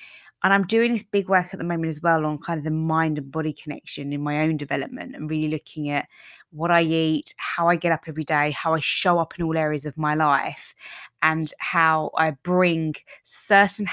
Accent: British